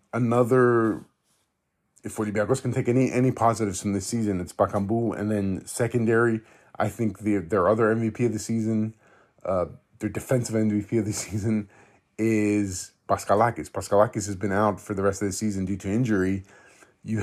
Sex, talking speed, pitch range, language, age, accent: male, 165 wpm, 100-115 Hz, English, 30-49, American